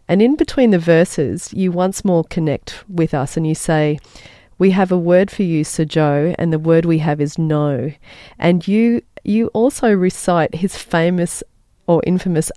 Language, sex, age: English, female, 40-59